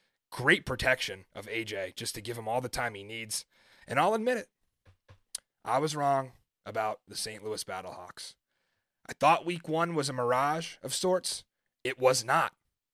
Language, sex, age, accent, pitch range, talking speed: English, male, 30-49, American, 115-155 Hz, 170 wpm